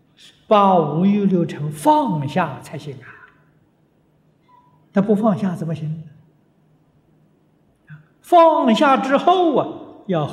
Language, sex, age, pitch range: Chinese, male, 60-79, 150-200 Hz